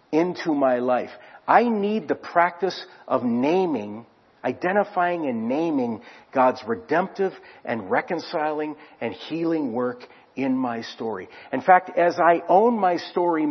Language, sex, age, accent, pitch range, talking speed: English, male, 50-69, American, 135-210 Hz, 130 wpm